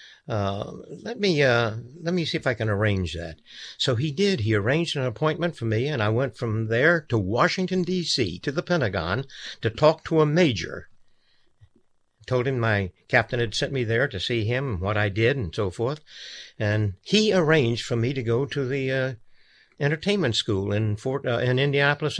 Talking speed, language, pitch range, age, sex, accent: 195 wpm, English, 105-135 Hz, 60-79, male, American